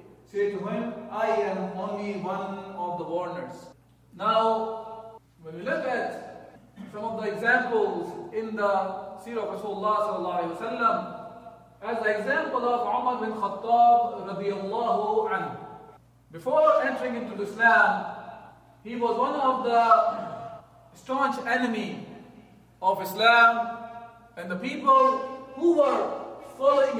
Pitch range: 195-240 Hz